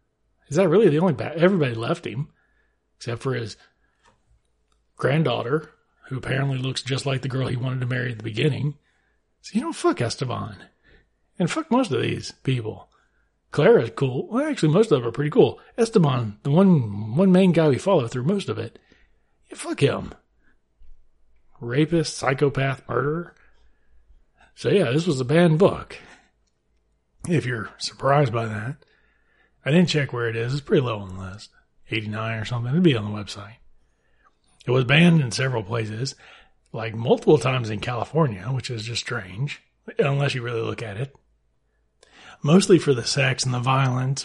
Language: English